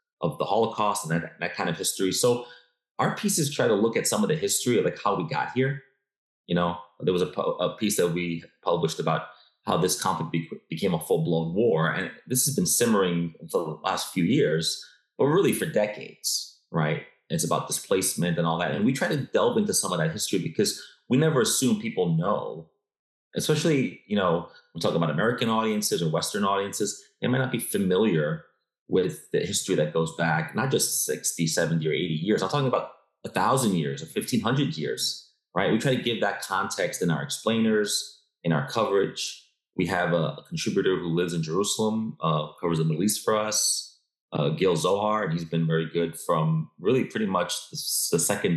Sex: male